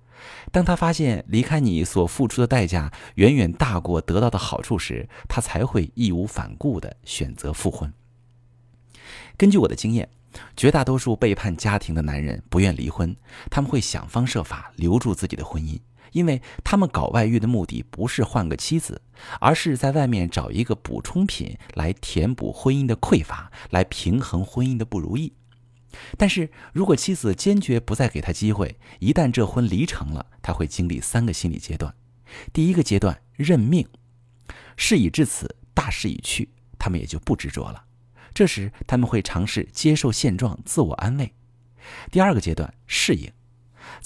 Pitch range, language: 95-130 Hz, Chinese